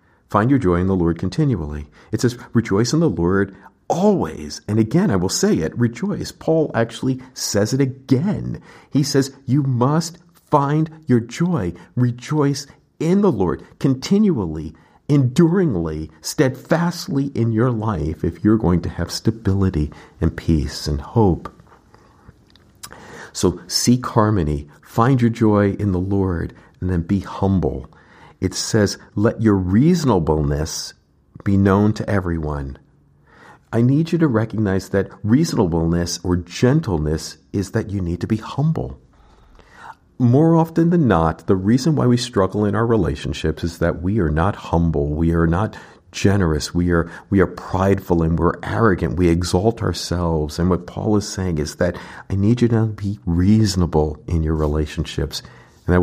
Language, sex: English, male